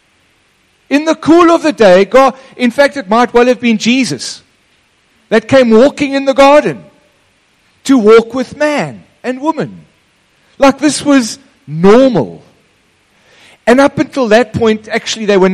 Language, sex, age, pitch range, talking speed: English, male, 50-69, 165-245 Hz, 150 wpm